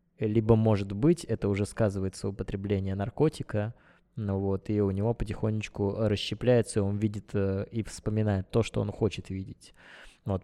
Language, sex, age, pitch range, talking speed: Russian, male, 20-39, 100-115 Hz, 140 wpm